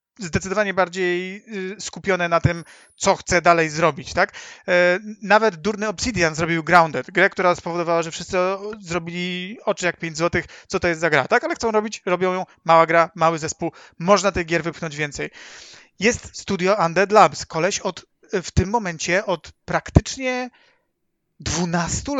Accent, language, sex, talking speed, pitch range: native, Polish, male, 155 wpm, 165-195 Hz